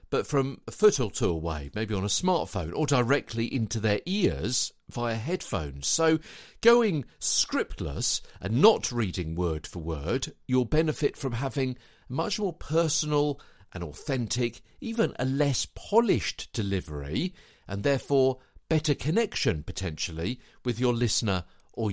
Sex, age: male, 50-69